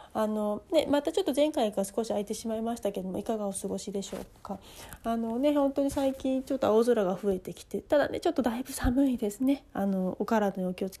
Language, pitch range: Japanese, 200-275 Hz